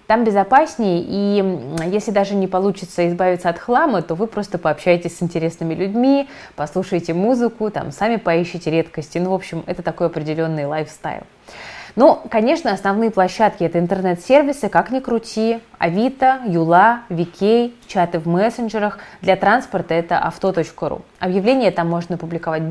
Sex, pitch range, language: female, 170-210 Hz, Russian